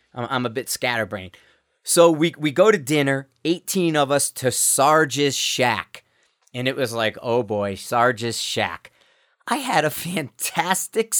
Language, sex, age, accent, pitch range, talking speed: English, male, 30-49, American, 125-170 Hz, 150 wpm